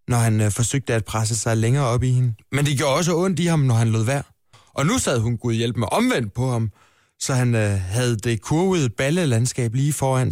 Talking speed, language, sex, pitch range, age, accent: 235 wpm, Danish, male, 110-145 Hz, 20-39, native